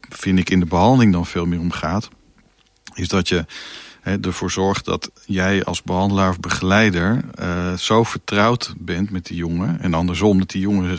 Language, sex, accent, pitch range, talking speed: Dutch, male, Dutch, 90-105 Hz, 185 wpm